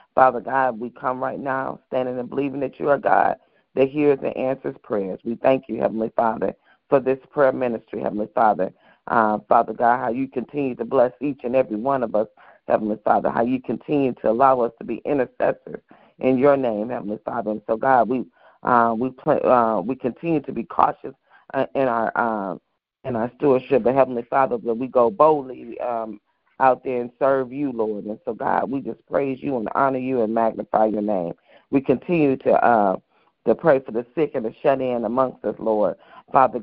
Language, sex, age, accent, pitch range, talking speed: English, female, 40-59, American, 115-135 Hz, 200 wpm